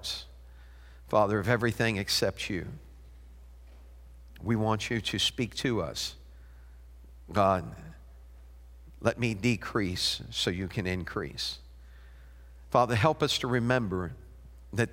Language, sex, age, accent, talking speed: English, male, 50-69, American, 105 wpm